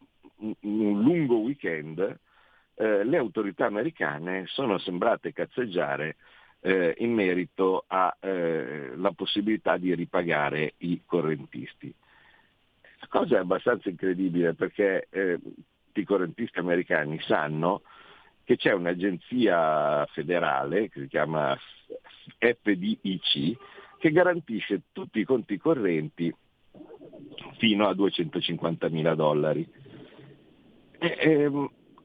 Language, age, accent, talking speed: Italian, 50-69, native, 95 wpm